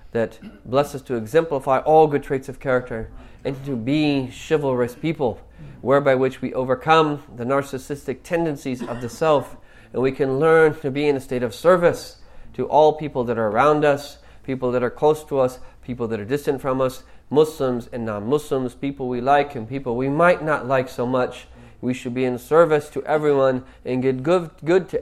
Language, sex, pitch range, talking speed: English, male, 120-145 Hz, 195 wpm